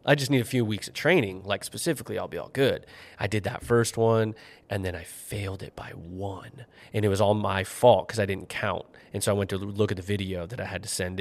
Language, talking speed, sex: English, 270 wpm, male